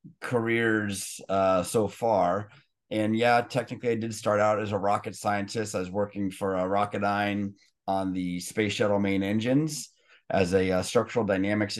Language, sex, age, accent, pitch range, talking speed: English, male, 30-49, American, 95-110 Hz, 170 wpm